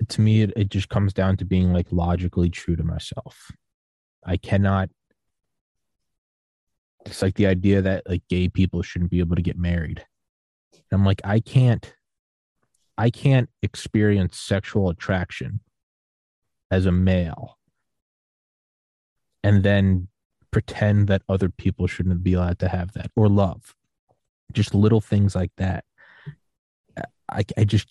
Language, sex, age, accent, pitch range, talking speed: English, male, 20-39, American, 90-105 Hz, 140 wpm